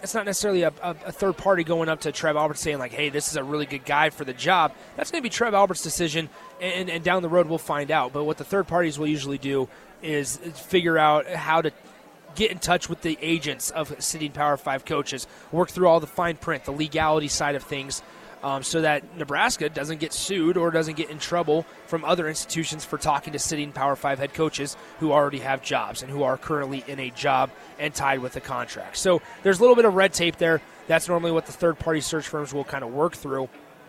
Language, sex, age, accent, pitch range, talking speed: English, male, 30-49, American, 145-170 Hz, 240 wpm